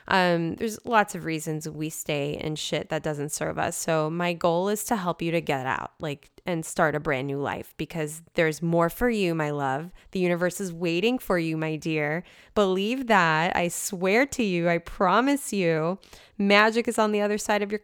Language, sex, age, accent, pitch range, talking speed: English, female, 20-39, American, 160-205 Hz, 210 wpm